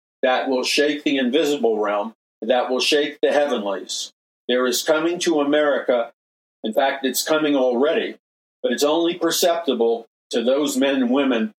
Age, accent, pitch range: 50-69, American, 110-145 Hz